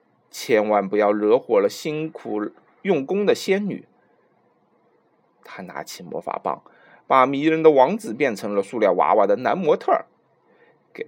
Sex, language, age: male, Chinese, 30-49